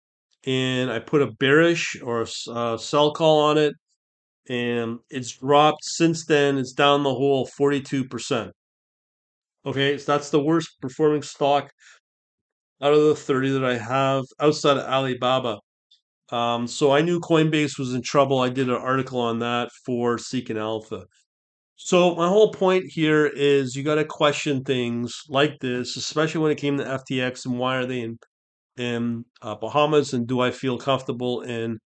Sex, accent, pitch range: male, American, 120-140 Hz